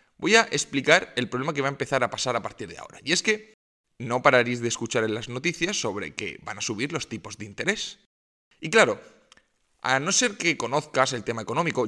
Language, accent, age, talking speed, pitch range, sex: Spanish, Spanish, 20-39, 220 wpm, 120-175 Hz, male